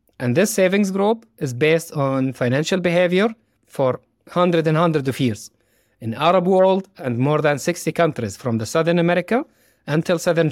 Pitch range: 120-175 Hz